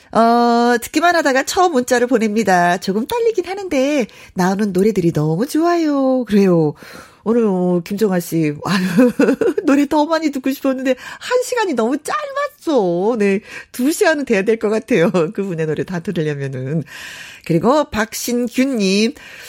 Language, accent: Korean, native